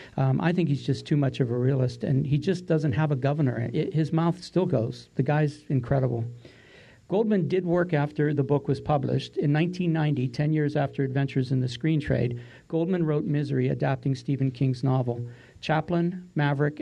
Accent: American